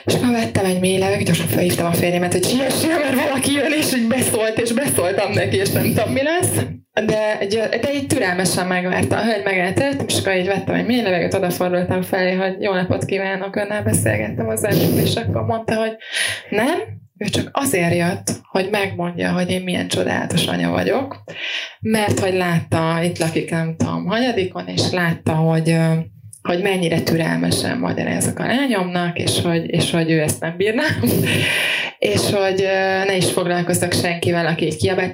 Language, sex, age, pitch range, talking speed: Hungarian, female, 20-39, 160-195 Hz, 170 wpm